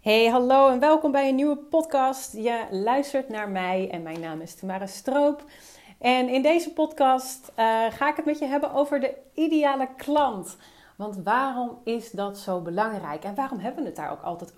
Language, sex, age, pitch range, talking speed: Dutch, female, 30-49, 185-245 Hz, 195 wpm